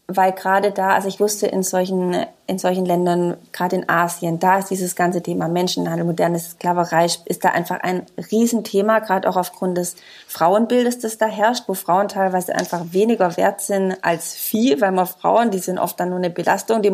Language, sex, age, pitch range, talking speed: German, female, 20-39, 175-210 Hz, 200 wpm